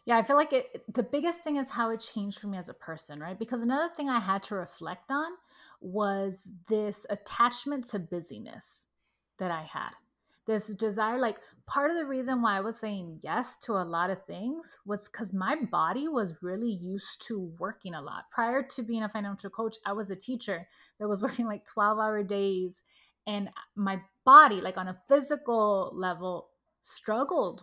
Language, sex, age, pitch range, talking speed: English, female, 30-49, 195-245 Hz, 190 wpm